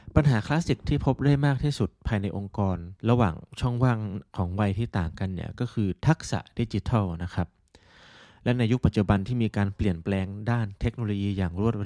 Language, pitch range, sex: Thai, 95-120 Hz, male